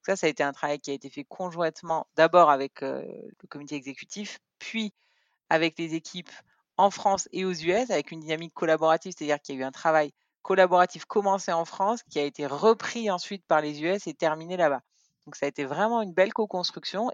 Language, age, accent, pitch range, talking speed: French, 40-59, French, 140-185 Hz, 210 wpm